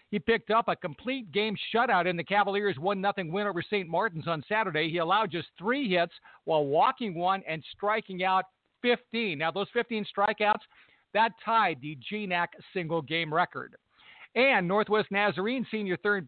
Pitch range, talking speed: 175-220 Hz, 160 wpm